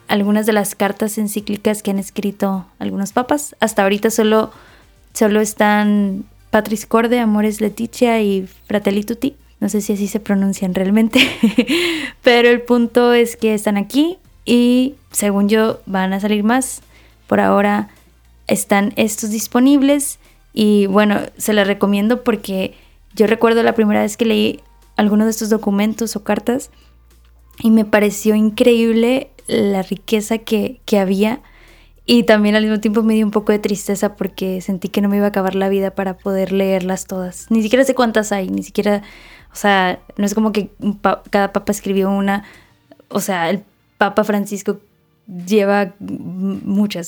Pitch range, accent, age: 200-225 Hz, Mexican, 20-39